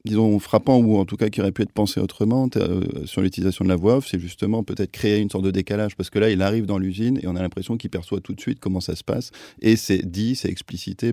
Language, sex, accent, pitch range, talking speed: French, male, French, 90-105 Hz, 280 wpm